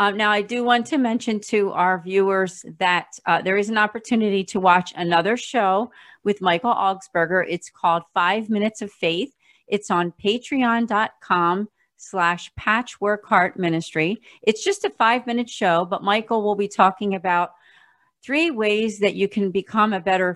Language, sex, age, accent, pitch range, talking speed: English, female, 40-59, American, 175-215 Hz, 155 wpm